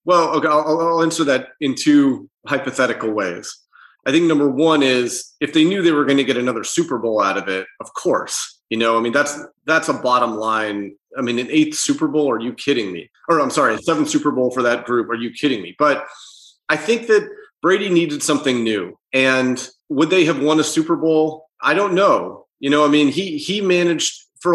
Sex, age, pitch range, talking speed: male, 30-49, 125-155 Hz, 220 wpm